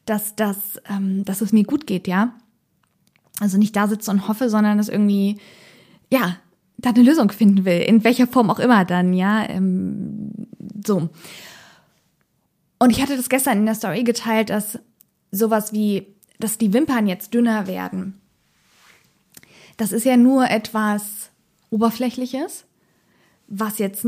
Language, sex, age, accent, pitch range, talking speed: German, female, 20-39, German, 205-250 Hz, 145 wpm